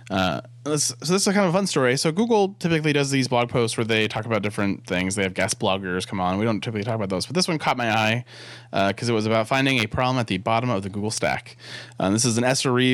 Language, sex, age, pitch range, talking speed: English, male, 20-39, 100-125 Hz, 290 wpm